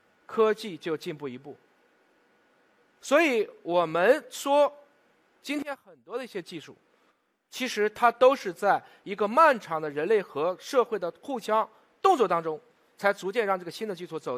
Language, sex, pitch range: Chinese, male, 175-255 Hz